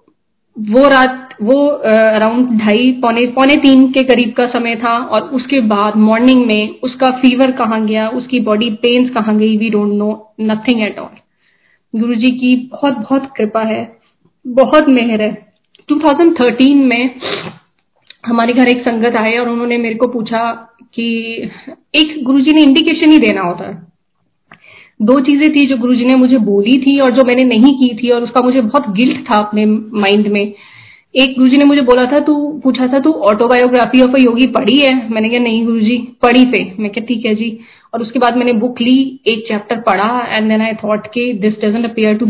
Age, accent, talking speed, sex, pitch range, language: 30-49, native, 190 wpm, female, 220-265 Hz, Hindi